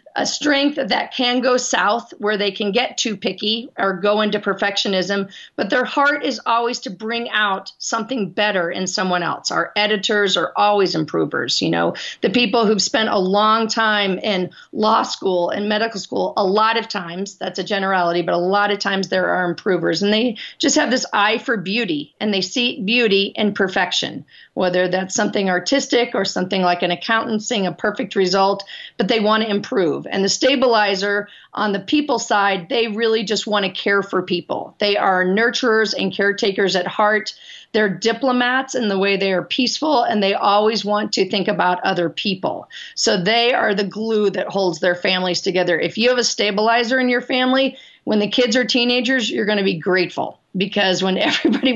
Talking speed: 190 wpm